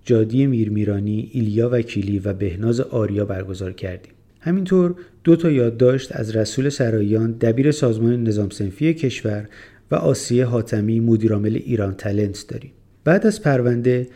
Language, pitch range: Persian, 105-135 Hz